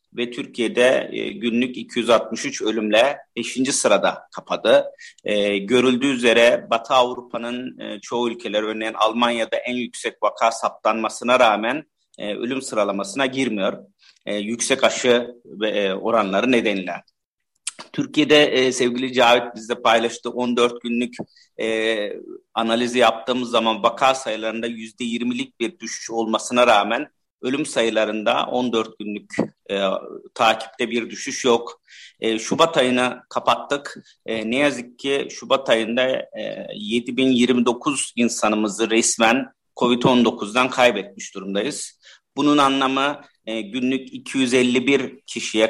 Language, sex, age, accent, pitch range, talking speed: Turkish, male, 50-69, native, 115-130 Hz, 100 wpm